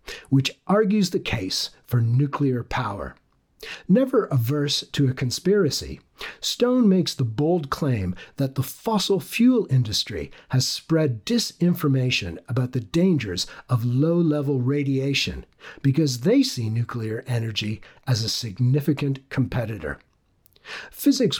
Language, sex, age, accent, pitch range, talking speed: English, male, 50-69, American, 120-175 Hz, 115 wpm